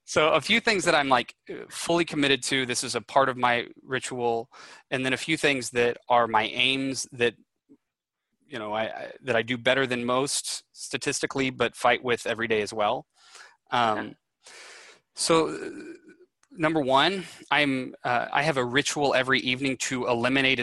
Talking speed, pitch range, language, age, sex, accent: 170 wpm, 120-145 Hz, English, 20-39, male, American